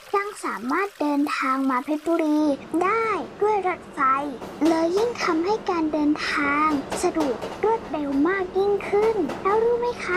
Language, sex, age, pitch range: Thai, male, 10-29, 300-405 Hz